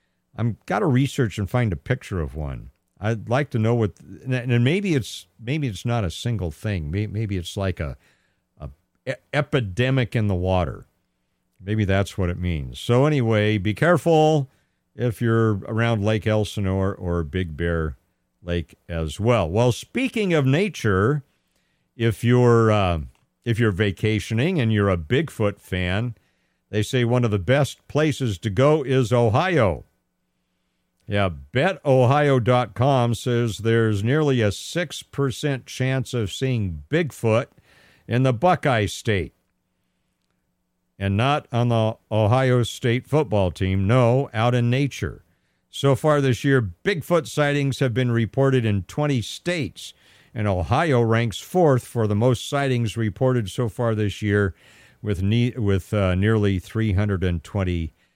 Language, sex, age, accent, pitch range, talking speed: English, male, 50-69, American, 95-130 Hz, 140 wpm